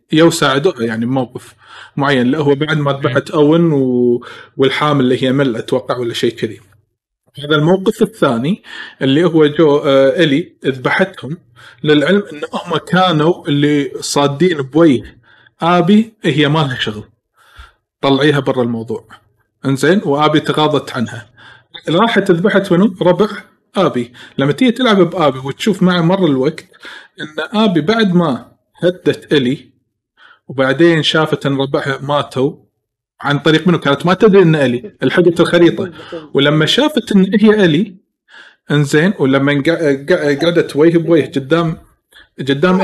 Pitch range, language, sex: 135-180 Hz, Arabic, male